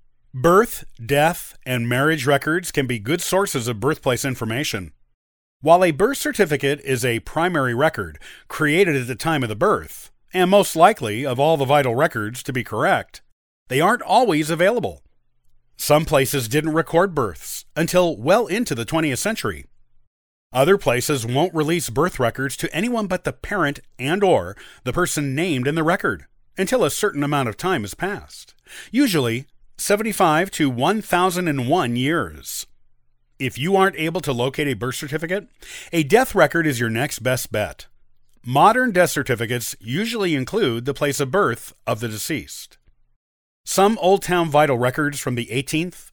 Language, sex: English, male